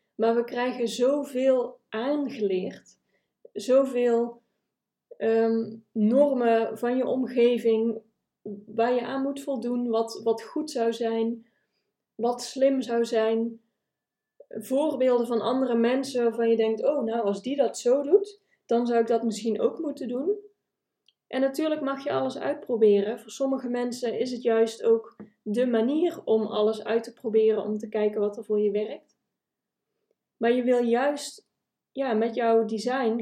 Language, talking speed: Dutch, 145 wpm